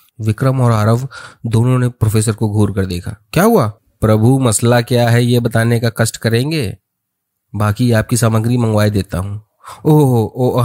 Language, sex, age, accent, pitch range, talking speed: Hindi, male, 30-49, native, 105-120 Hz, 170 wpm